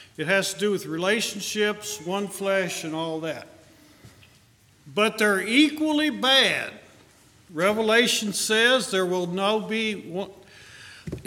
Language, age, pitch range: English, 50-69, 145-195 Hz